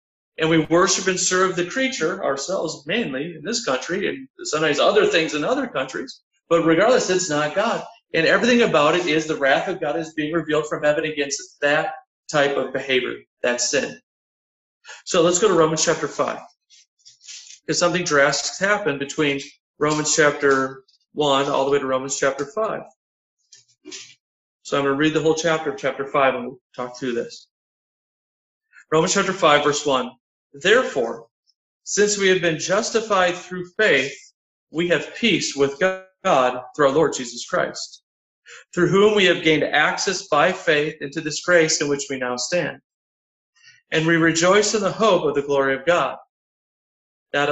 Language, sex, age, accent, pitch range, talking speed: English, male, 40-59, American, 140-185 Hz, 170 wpm